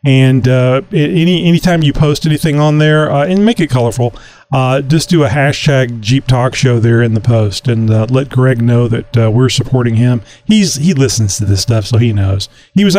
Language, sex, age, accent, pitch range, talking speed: English, male, 40-59, American, 115-150 Hz, 215 wpm